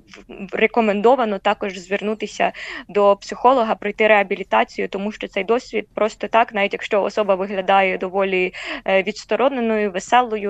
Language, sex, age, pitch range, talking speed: Ukrainian, female, 20-39, 200-225 Hz, 115 wpm